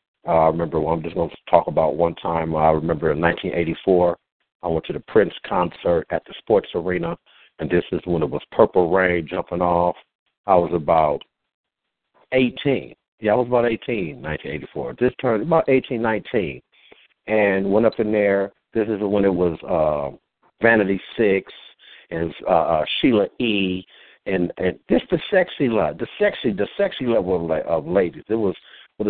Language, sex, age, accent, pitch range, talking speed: English, male, 60-79, American, 90-120 Hz, 175 wpm